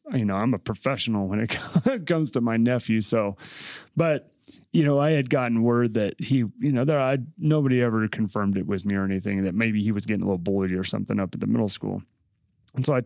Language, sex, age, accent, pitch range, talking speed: English, male, 30-49, American, 110-140 Hz, 235 wpm